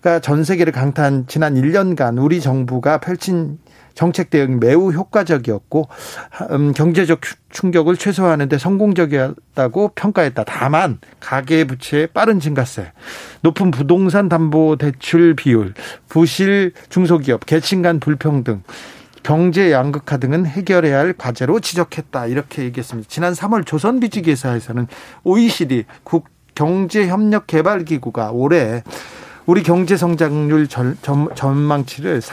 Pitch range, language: 140-185 Hz, Korean